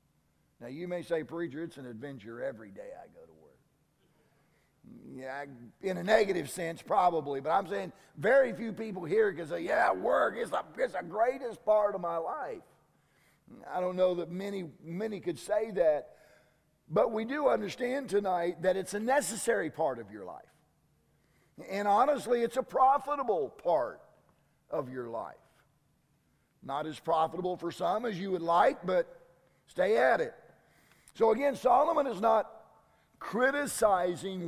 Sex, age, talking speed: male, 50-69, 155 wpm